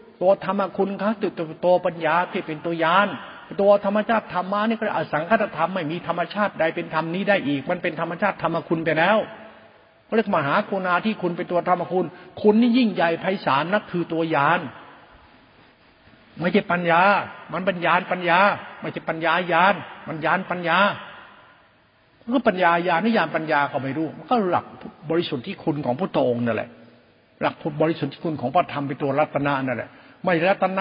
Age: 60-79